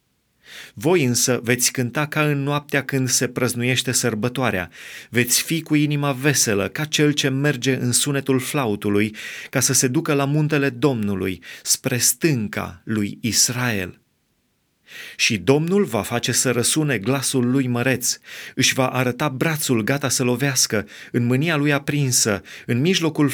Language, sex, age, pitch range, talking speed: Romanian, male, 30-49, 115-145 Hz, 145 wpm